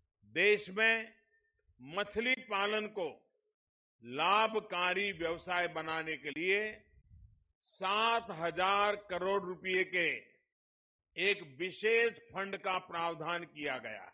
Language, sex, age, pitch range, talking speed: Hindi, male, 50-69, 170-225 Hz, 90 wpm